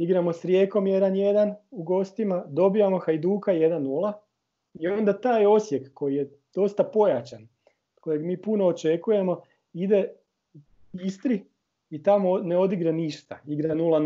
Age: 40-59